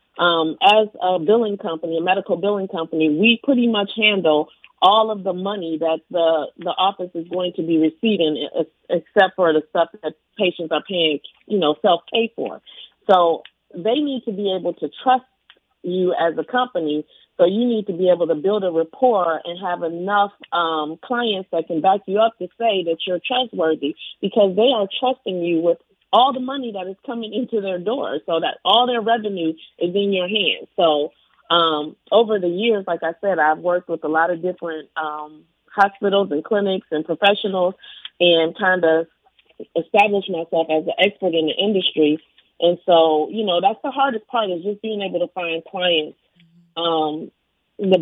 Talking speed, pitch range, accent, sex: 185 wpm, 165-205 Hz, American, female